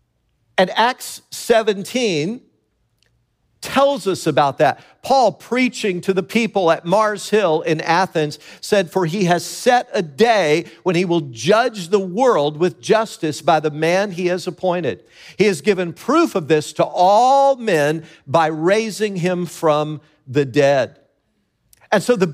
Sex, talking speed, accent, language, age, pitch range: male, 150 wpm, American, English, 50-69, 160-220 Hz